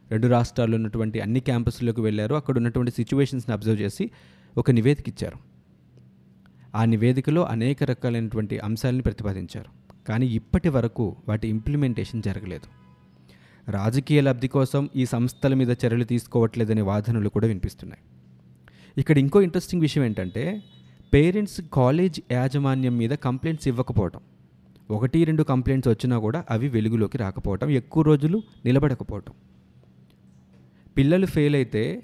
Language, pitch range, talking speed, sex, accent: Telugu, 105-140 Hz, 115 wpm, male, native